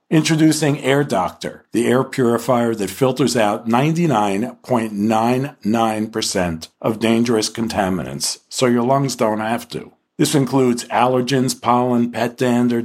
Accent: American